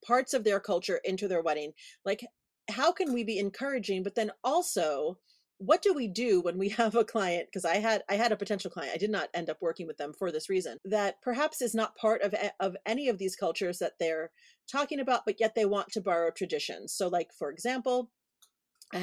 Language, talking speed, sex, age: English, 225 wpm, female, 40-59